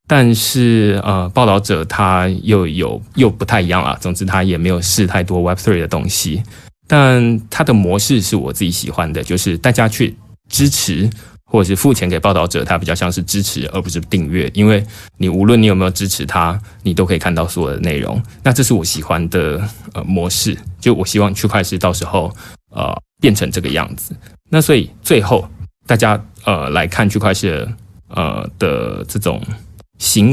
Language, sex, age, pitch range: Chinese, male, 20-39, 90-105 Hz